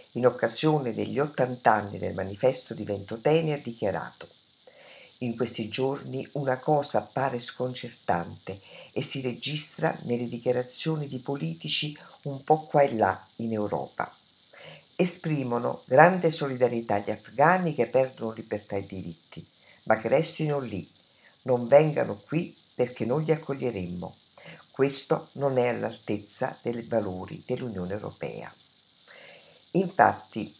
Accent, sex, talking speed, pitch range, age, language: native, female, 120 wpm, 115-150 Hz, 50-69, Italian